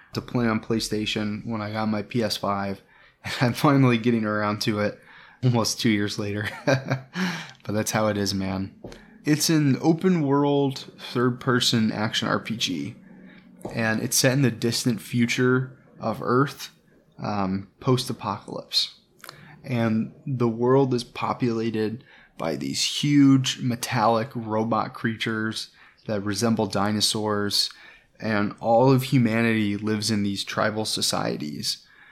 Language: English